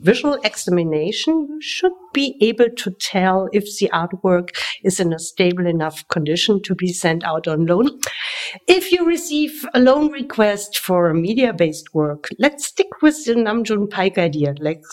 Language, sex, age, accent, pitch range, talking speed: English, female, 50-69, German, 175-240 Hz, 165 wpm